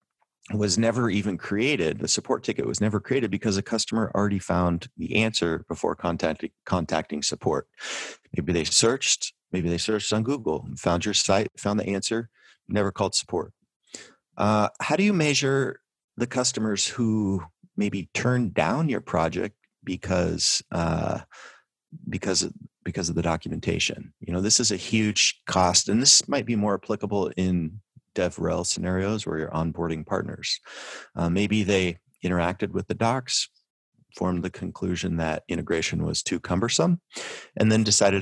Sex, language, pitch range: male, English, 85-115 Hz